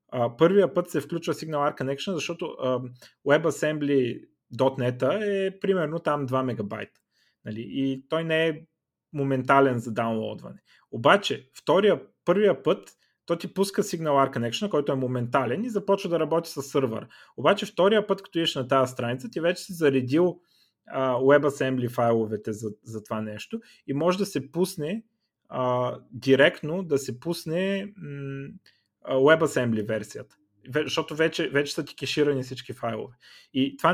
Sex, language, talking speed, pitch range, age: male, Bulgarian, 145 wpm, 125-165 Hz, 30-49